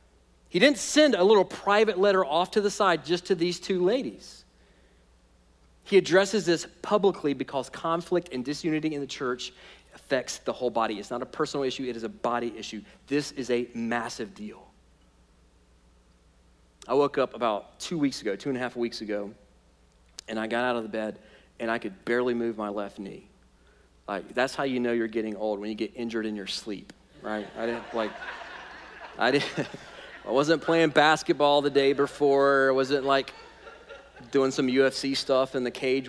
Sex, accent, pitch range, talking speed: male, American, 110-140 Hz, 185 wpm